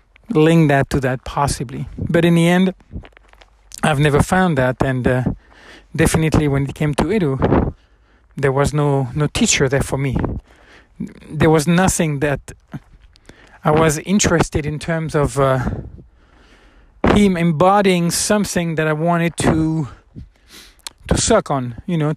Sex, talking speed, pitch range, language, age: male, 140 wpm, 135-175 Hz, English, 40-59